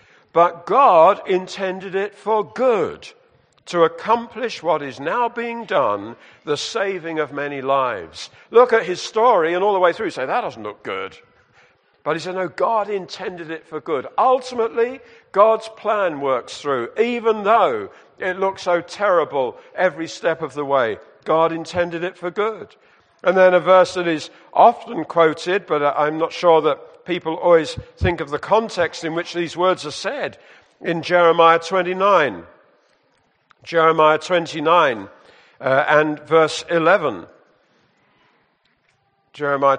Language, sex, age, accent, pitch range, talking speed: English, male, 50-69, British, 155-205 Hz, 150 wpm